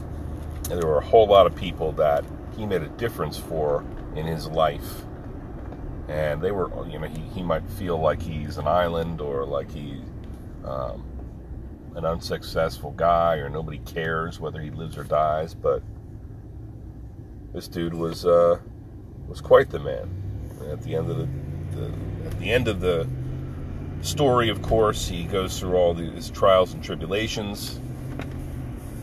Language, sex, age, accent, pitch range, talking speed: English, male, 40-59, American, 80-105 Hz, 160 wpm